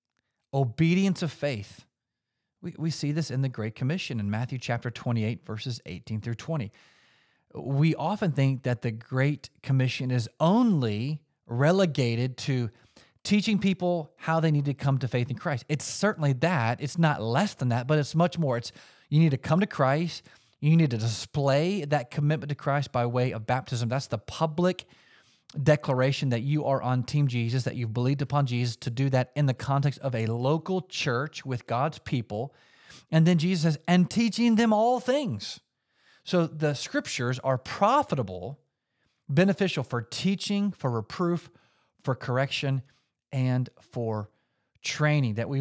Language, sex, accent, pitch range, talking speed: English, male, American, 120-155 Hz, 165 wpm